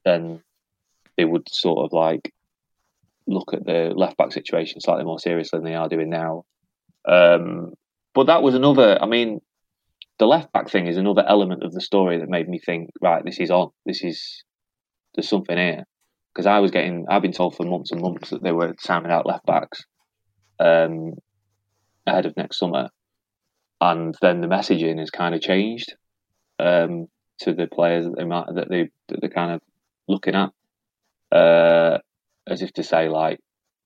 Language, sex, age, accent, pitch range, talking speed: English, male, 20-39, British, 85-100 Hz, 175 wpm